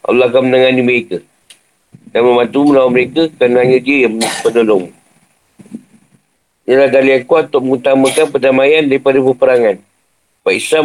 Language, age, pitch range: Malay, 50-69, 130-150 Hz